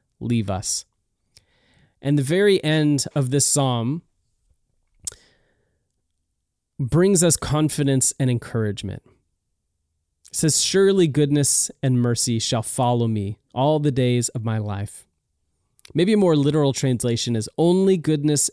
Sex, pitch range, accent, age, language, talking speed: male, 110-150 Hz, American, 30-49, English, 120 wpm